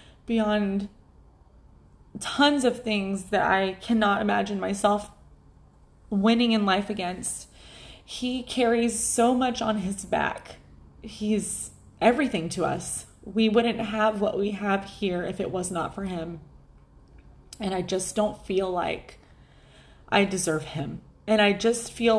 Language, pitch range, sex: English, 185-225 Hz, female